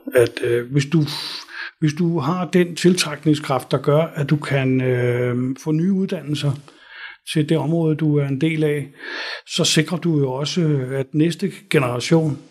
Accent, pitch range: native, 135-160 Hz